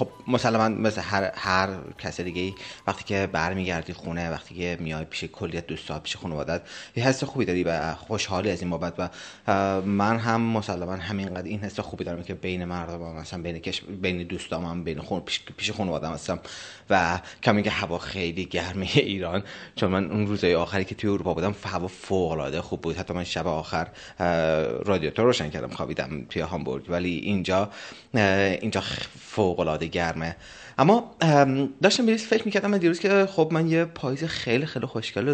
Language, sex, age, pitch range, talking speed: Persian, male, 30-49, 90-120 Hz, 175 wpm